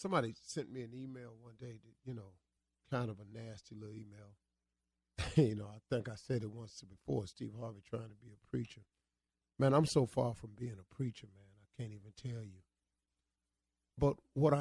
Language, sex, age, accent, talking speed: English, male, 40-59, American, 195 wpm